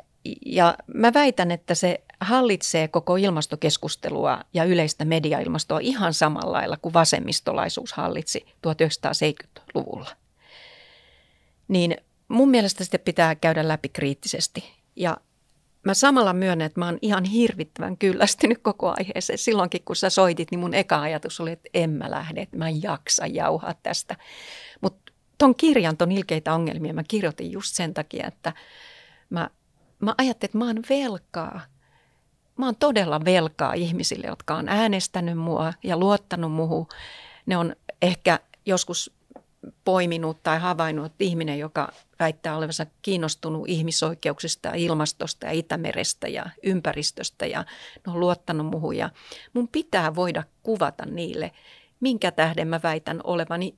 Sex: female